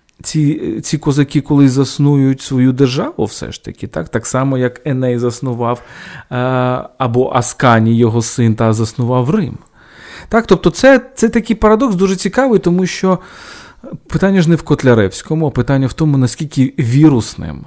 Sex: male